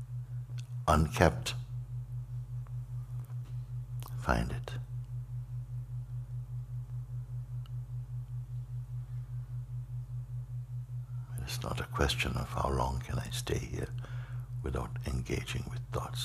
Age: 60-79